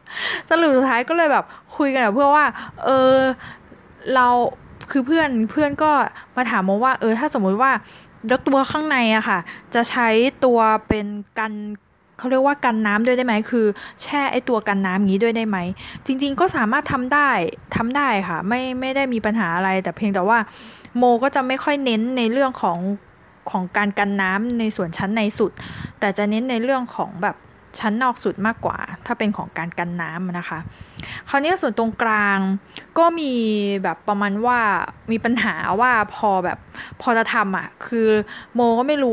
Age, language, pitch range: 20-39, Thai, 200-255 Hz